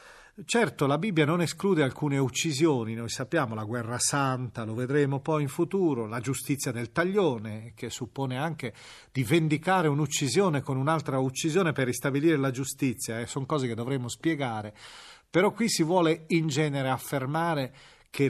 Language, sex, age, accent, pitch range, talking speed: Italian, male, 40-59, native, 125-165 Hz, 155 wpm